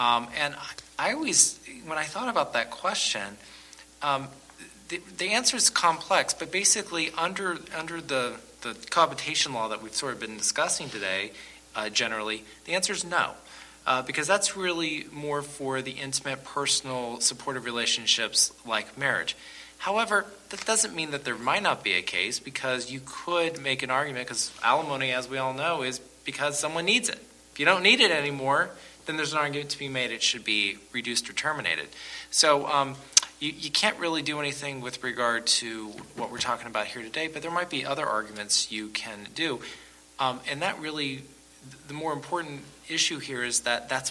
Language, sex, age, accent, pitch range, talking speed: English, male, 40-59, American, 120-150 Hz, 185 wpm